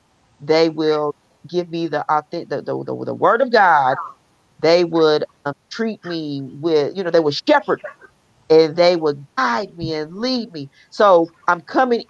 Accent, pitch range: American, 160-205 Hz